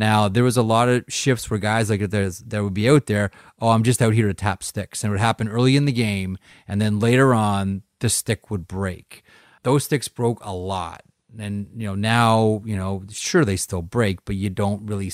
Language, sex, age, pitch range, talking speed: English, male, 30-49, 95-115 Hz, 230 wpm